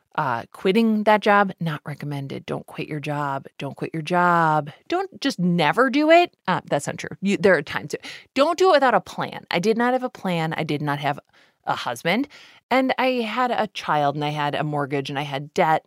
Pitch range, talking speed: 145-200 Hz, 220 wpm